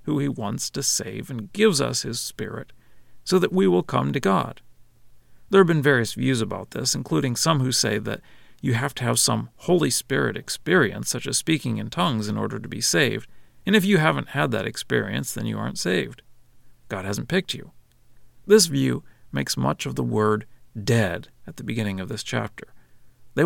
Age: 50-69